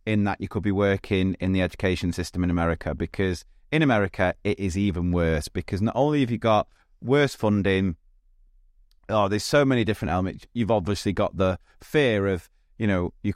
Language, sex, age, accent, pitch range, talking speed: English, male, 30-49, British, 90-110 Hz, 190 wpm